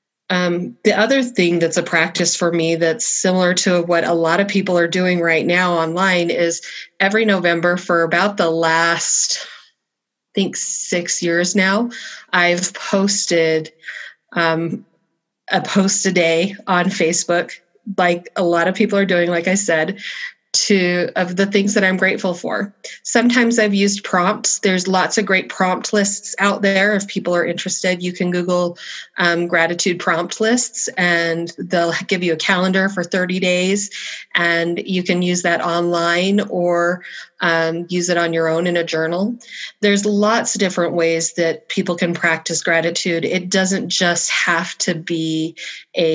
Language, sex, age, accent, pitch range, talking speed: English, female, 30-49, American, 170-190 Hz, 165 wpm